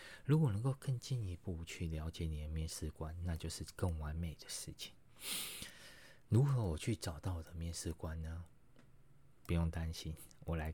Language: Chinese